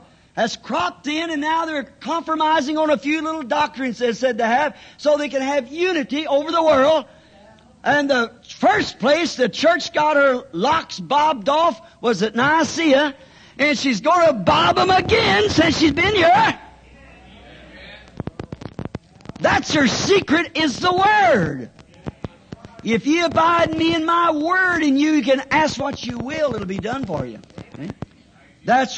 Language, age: English, 50-69